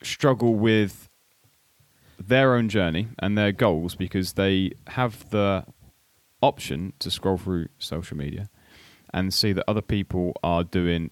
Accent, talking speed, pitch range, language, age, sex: British, 135 wpm, 90-105 Hz, English, 30-49, male